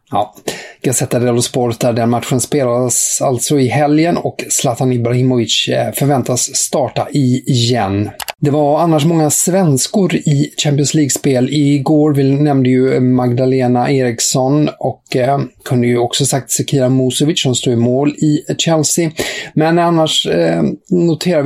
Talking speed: 130 wpm